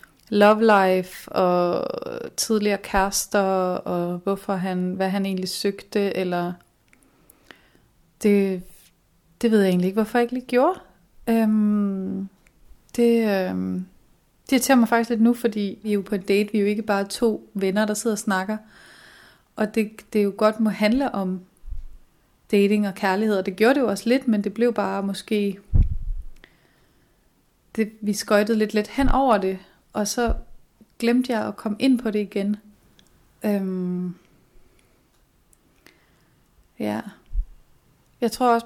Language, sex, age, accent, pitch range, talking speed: Danish, female, 30-49, native, 195-220 Hz, 150 wpm